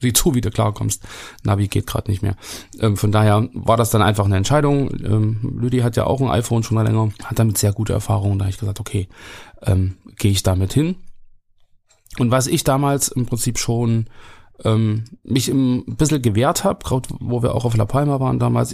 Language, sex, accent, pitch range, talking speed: German, male, German, 105-120 Hz, 210 wpm